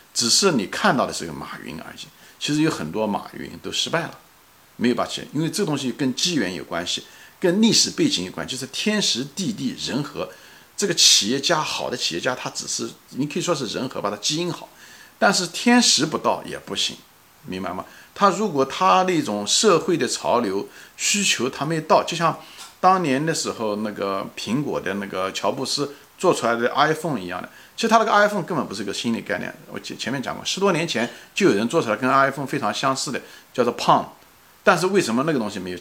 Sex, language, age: male, Chinese, 50-69